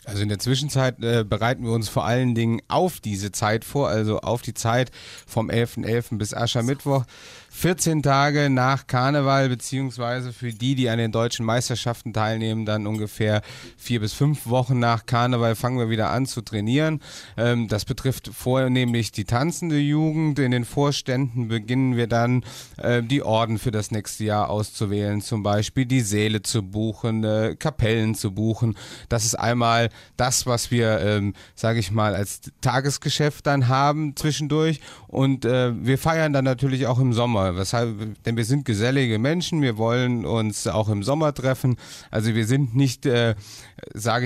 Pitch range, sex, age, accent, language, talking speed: 110-130 Hz, male, 30-49, German, German, 165 wpm